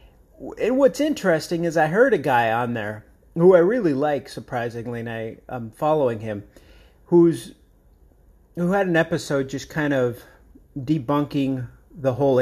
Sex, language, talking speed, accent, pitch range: male, English, 150 wpm, American, 115-145 Hz